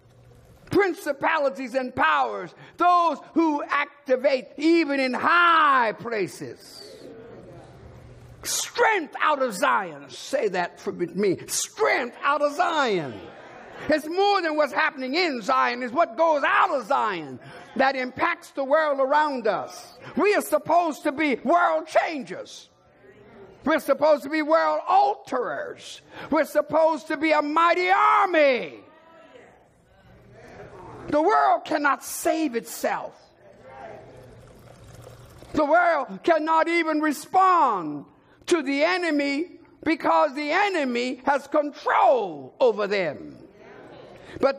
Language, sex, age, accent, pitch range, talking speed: English, male, 50-69, American, 260-325 Hz, 110 wpm